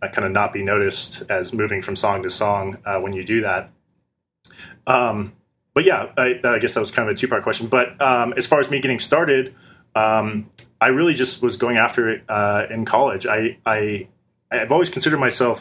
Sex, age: male, 20-39